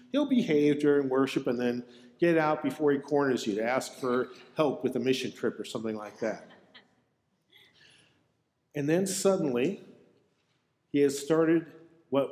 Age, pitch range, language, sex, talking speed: 50-69, 130-170 Hz, English, male, 150 wpm